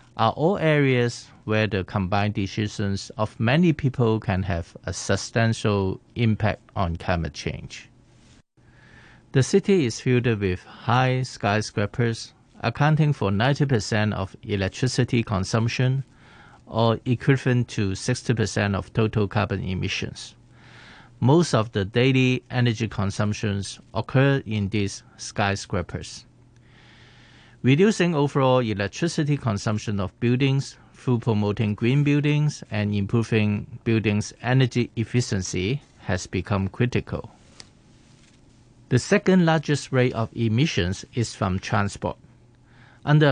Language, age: English, 50-69